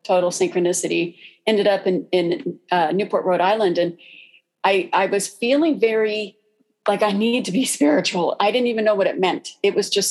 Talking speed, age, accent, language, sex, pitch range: 190 wpm, 40-59, American, English, female, 180-230 Hz